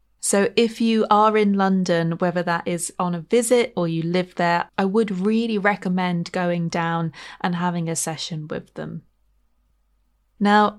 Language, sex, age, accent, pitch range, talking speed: English, female, 30-49, British, 175-225 Hz, 160 wpm